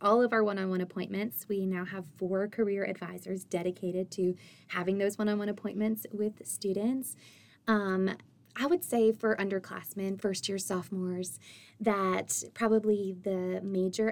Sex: female